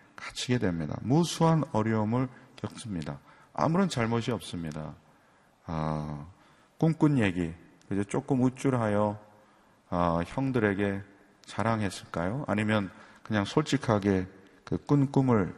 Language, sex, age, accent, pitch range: Korean, male, 40-59, native, 95-130 Hz